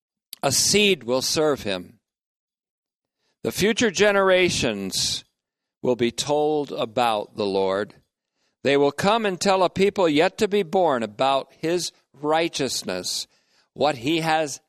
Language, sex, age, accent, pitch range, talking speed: English, male, 50-69, American, 115-170 Hz, 125 wpm